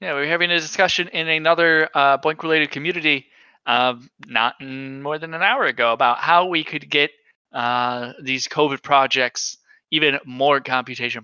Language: English